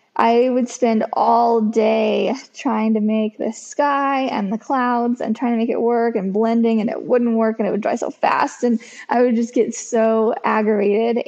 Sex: female